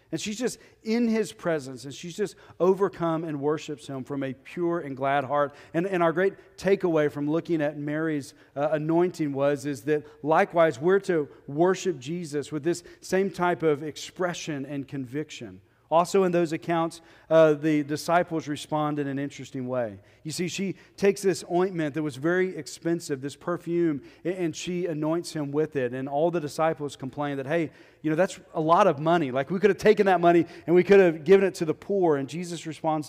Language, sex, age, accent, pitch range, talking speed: English, male, 40-59, American, 140-170 Hz, 200 wpm